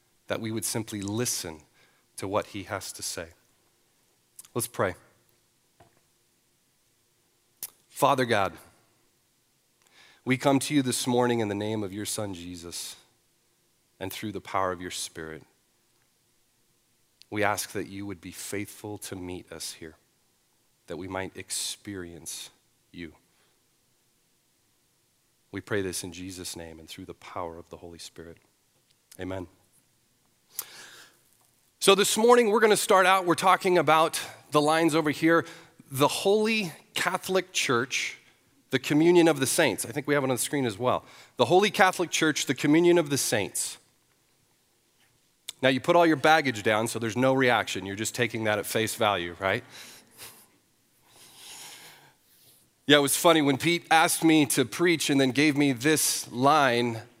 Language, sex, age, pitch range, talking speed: English, male, 40-59, 100-155 Hz, 150 wpm